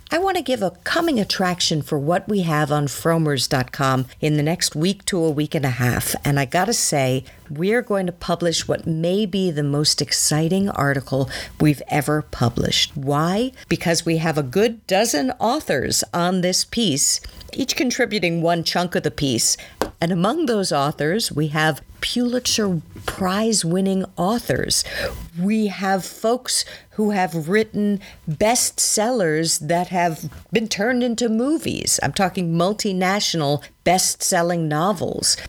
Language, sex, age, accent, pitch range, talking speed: English, female, 50-69, American, 150-195 Hz, 150 wpm